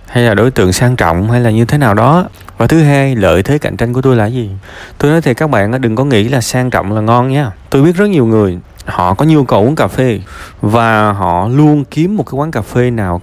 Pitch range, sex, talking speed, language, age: 100-140 Hz, male, 270 wpm, Vietnamese, 20-39